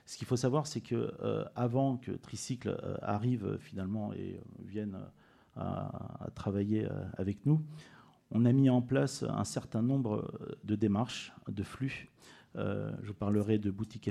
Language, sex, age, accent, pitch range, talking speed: French, male, 40-59, French, 105-125 Hz, 185 wpm